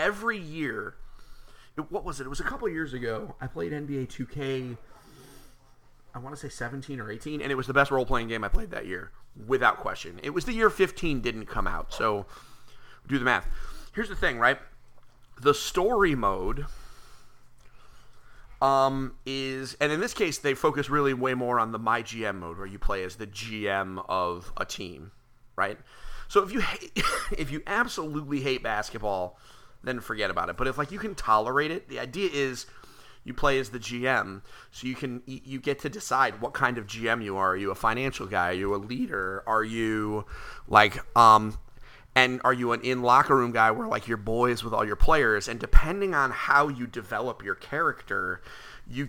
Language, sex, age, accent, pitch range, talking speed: English, male, 30-49, American, 110-140 Hz, 195 wpm